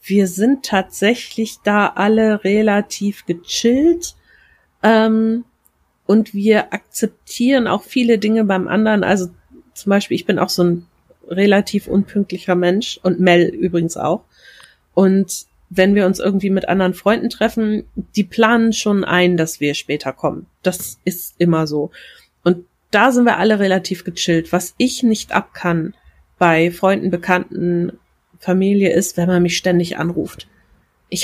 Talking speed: 145 wpm